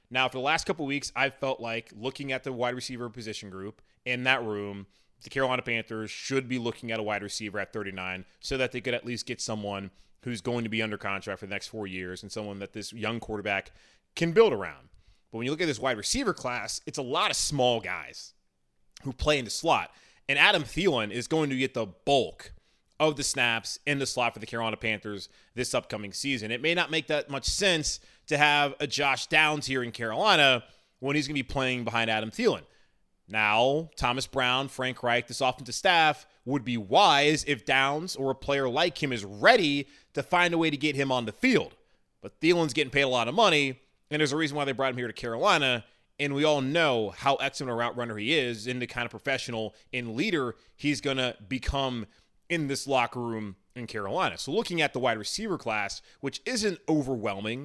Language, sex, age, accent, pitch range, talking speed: English, male, 30-49, American, 110-140 Hz, 220 wpm